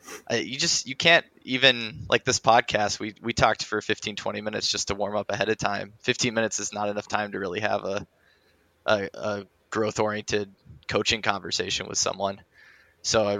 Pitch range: 100-110 Hz